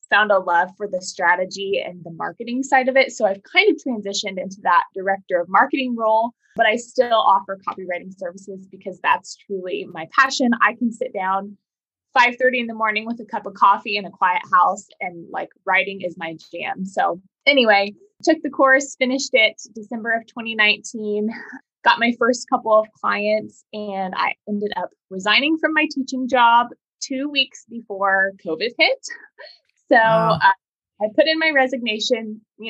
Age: 20-39